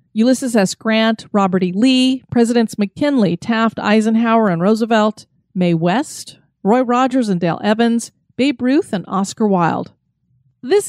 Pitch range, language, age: 200-255 Hz, English, 30-49